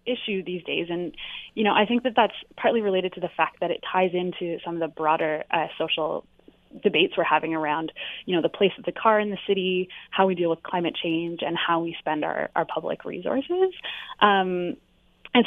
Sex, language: female, English